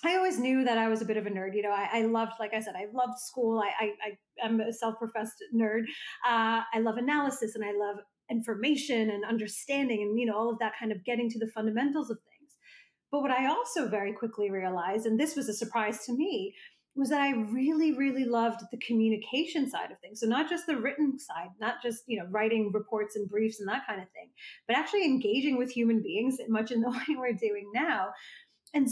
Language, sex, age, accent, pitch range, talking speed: English, female, 30-49, American, 220-275 Hz, 230 wpm